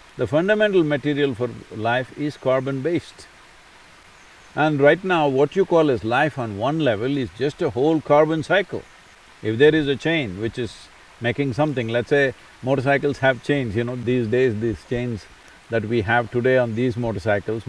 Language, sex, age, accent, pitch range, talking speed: Portuguese, male, 50-69, Indian, 125-160 Hz, 175 wpm